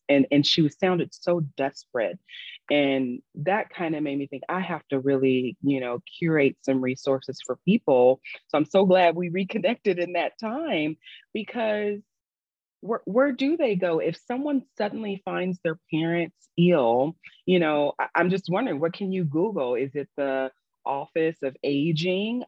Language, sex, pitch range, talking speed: English, female, 145-195 Hz, 165 wpm